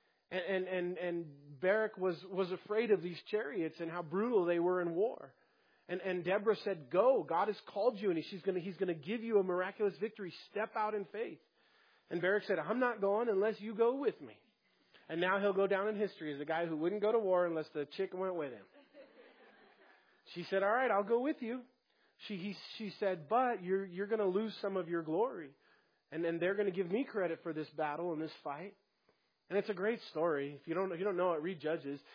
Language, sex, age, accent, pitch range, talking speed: English, male, 30-49, American, 170-205 Hz, 225 wpm